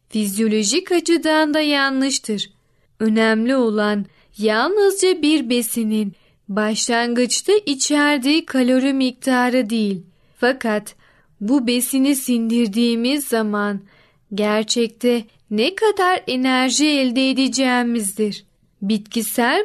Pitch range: 215-280 Hz